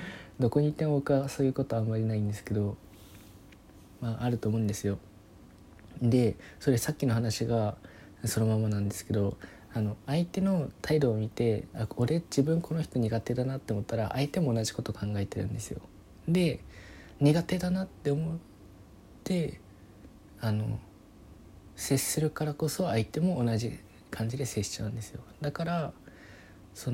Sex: male